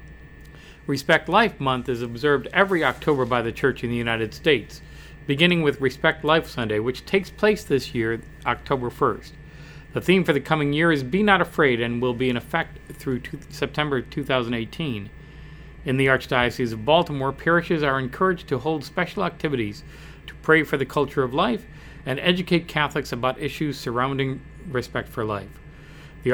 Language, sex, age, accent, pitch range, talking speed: English, male, 40-59, American, 125-155 Hz, 165 wpm